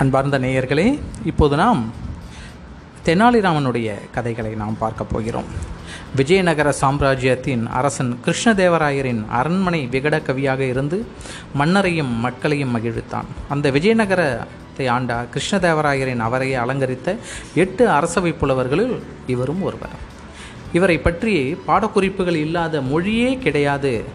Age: 30-49